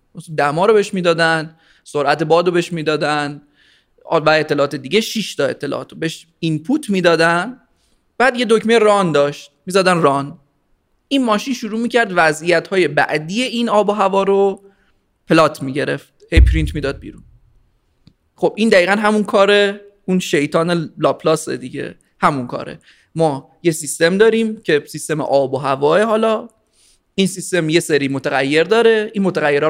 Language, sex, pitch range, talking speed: Persian, male, 155-215 Hz, 145 wpm